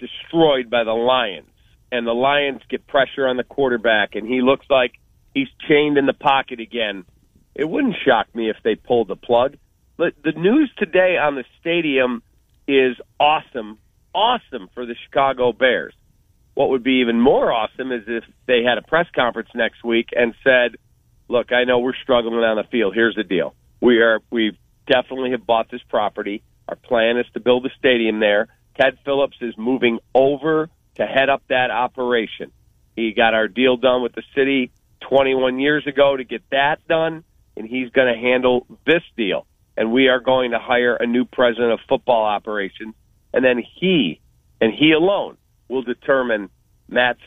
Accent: American